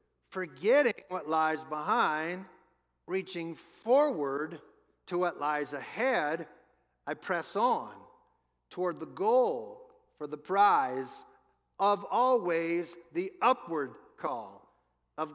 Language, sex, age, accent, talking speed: English, male, 50-69, American, 100 wpm